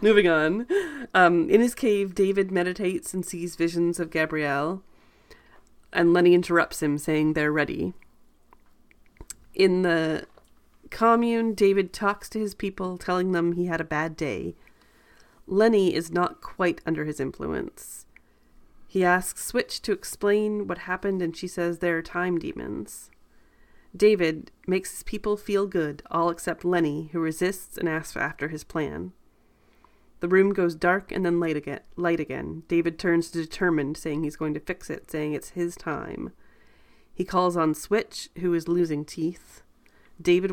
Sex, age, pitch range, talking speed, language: female, 30-49, 160-185 Hz, 150 wpm, English